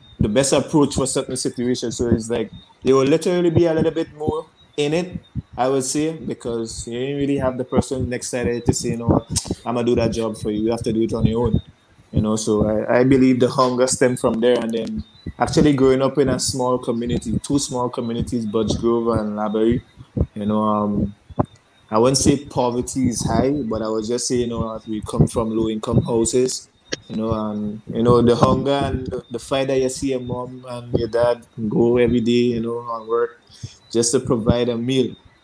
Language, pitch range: English, 115-130 Hz